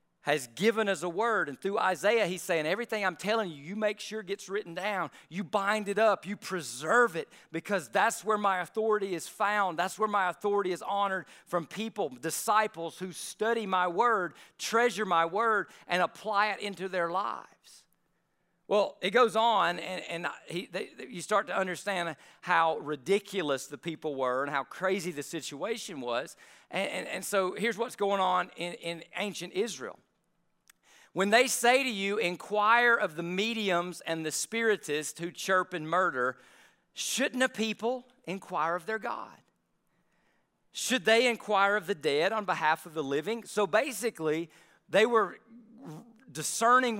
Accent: American